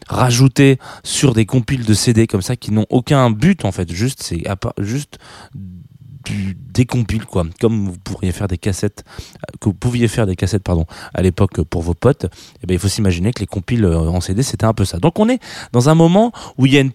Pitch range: 95-125 Hz